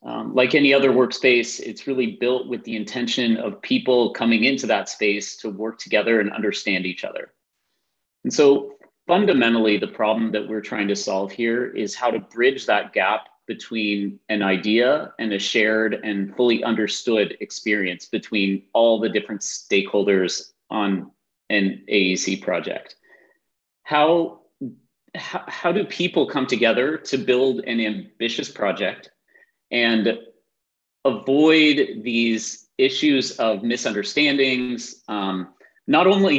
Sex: male